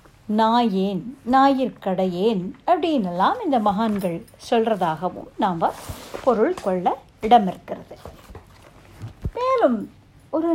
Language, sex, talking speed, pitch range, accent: Tamil, female, 80 wpm, 190-320 Hz, native